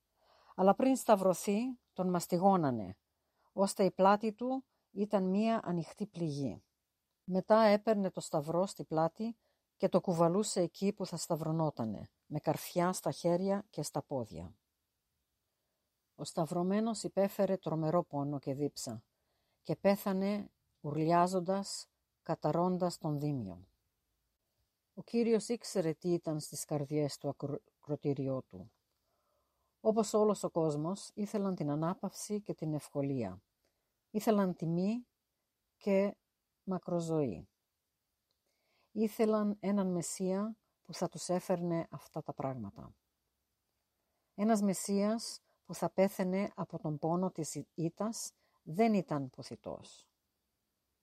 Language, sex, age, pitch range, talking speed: Greek, female, 50-69, 150-200 Hz, 110 wpm